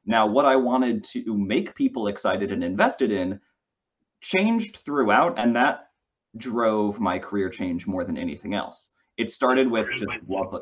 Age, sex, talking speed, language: 30-49, male, 155 wpm, English